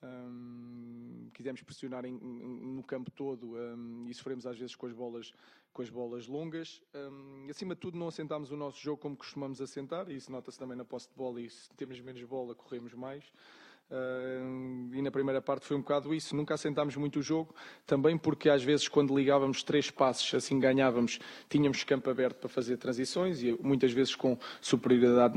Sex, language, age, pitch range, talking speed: male, Portuguese, 20-39, 130-150 Hz, 175 wpm